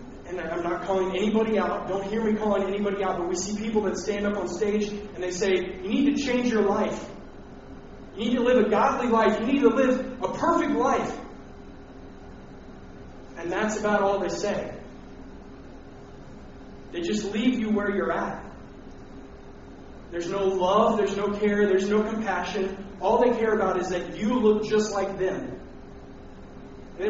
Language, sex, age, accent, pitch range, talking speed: English, male, 30-49, American, 180-215 Hz, 170 wpm